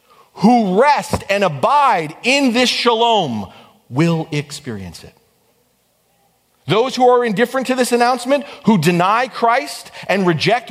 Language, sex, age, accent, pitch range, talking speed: English, male, 40-59, American, 145-240 Hz, 125 wpm